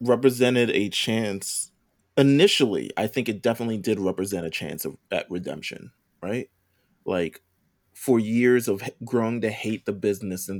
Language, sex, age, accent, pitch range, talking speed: English, male, 20-39, American, 95-115 Hz, 145 wpm